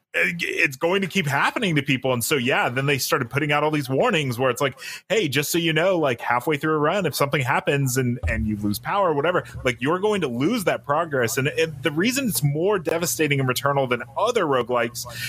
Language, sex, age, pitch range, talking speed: English, male, 30-49, 115-150 Hz, 235 wpm